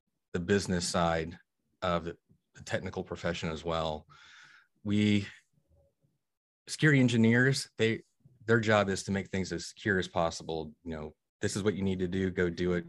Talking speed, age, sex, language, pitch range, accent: 165 wpm, 30-49, male, English, 80-95 Hz, American